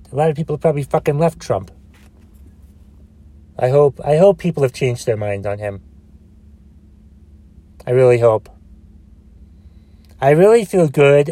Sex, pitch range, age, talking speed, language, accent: male, 75-125 Hz, 30-49, 140 wpm, English, American